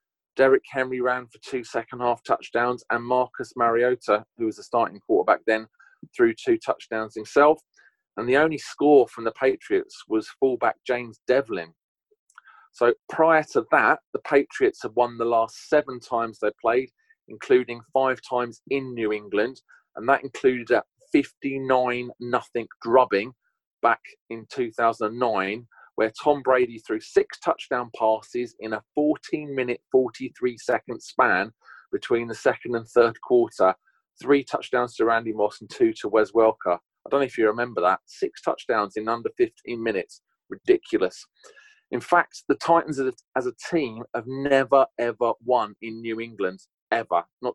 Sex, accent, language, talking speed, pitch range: male, British, English, 150 wpm, 115-150 Hz